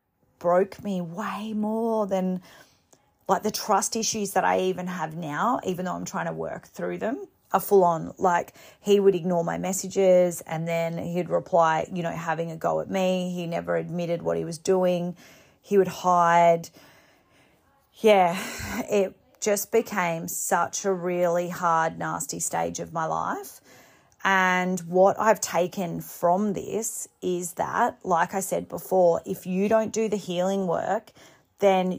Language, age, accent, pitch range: English, 30-49, Australian, 175-205 Hz